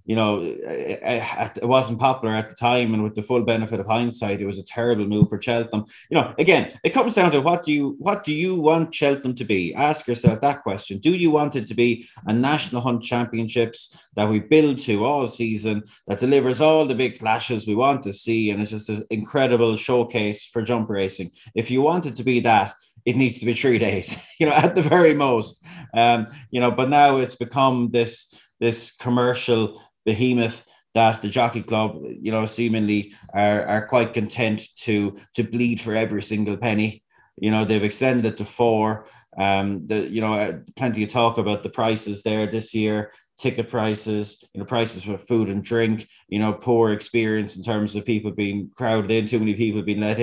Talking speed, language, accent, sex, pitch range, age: 205 wpm, English, Irish, male, 105-125 Hz, 30-49